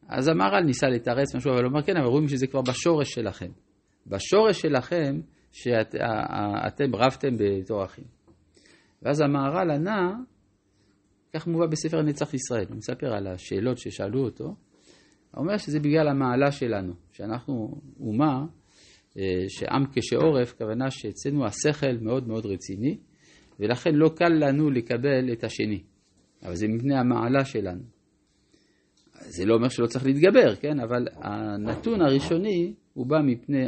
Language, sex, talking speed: Hebrew, male, 140 wpm